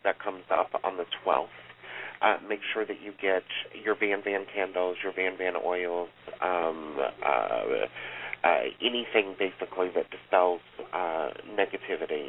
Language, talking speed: English, 135 wpm